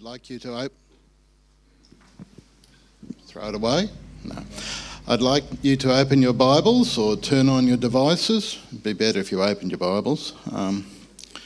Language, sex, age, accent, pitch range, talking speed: English, male, 60-79, Australian, 100-135 Hz, 150 wpm